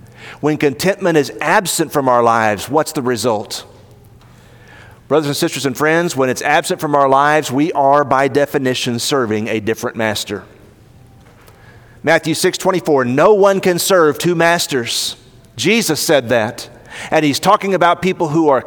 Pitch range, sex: 120-175 Hz, male